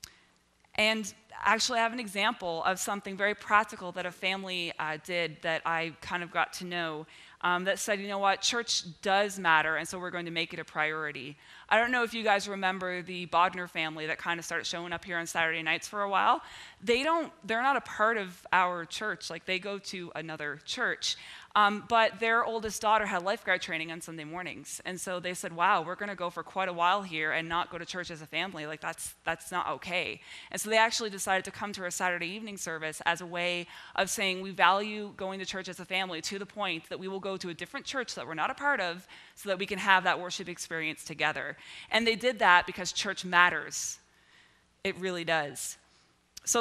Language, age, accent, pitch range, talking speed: English, 20-39, American, 170-205 Hz, 230 wpm